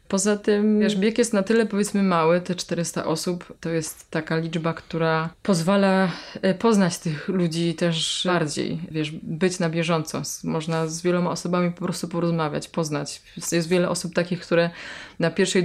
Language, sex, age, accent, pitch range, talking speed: Polish, female, 20-39, native, 165-185 Hz, 160 wpm